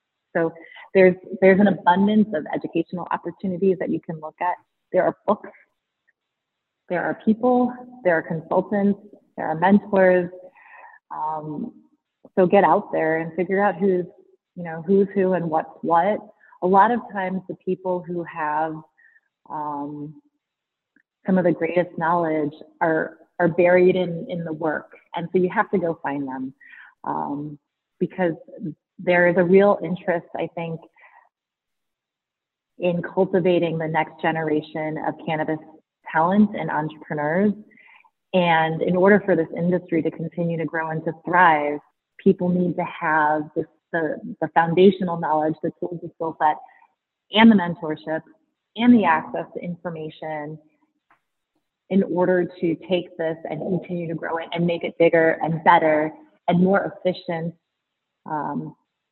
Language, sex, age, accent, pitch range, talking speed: English, female, 30-49, American, 160-190 Hz, 145 wpm